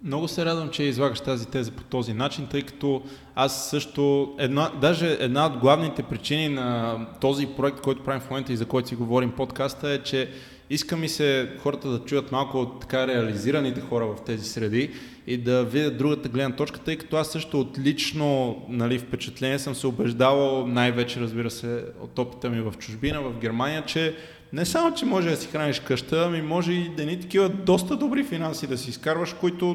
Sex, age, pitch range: male, 20-39, 130-155 Hz